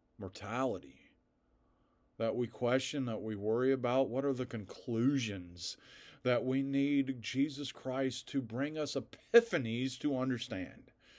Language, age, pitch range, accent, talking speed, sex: English, 40-59, 105-130 Hz, American, 125 wpm, male